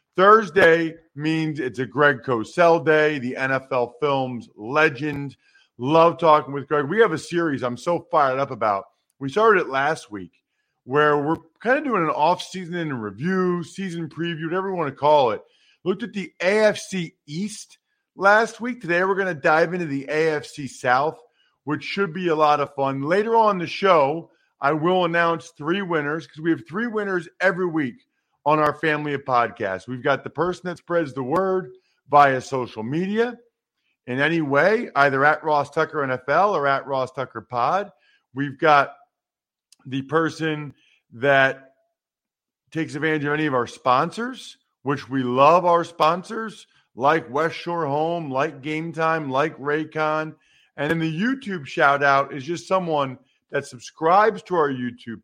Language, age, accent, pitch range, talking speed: English, 40-59, American, 140-180 Hz, 165 wpm